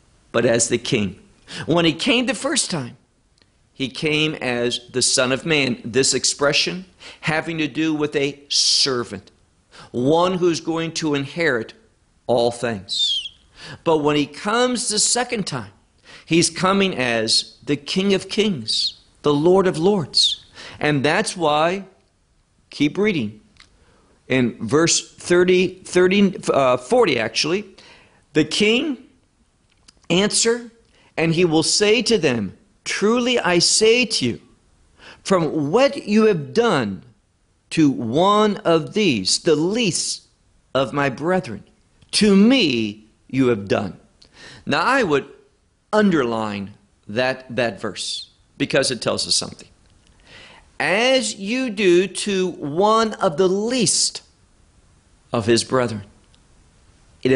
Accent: American